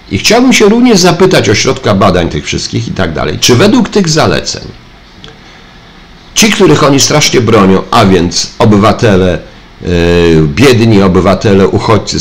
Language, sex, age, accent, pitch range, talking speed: Polish, male, 50-69, native, 85-110 Hz, 140 wpm